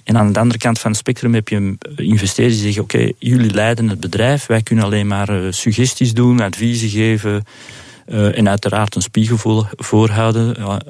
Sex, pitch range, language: male, 105-125 Hz, Dutch